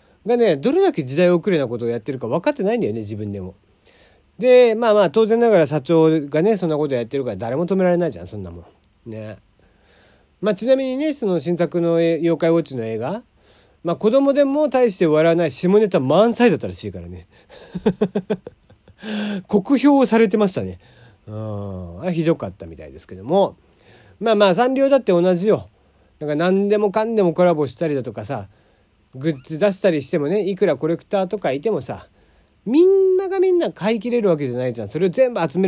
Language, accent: Japanese, native